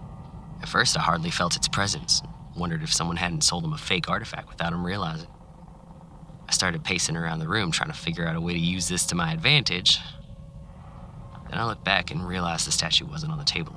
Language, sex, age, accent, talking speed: English, male, 20-39, American, 215 wpm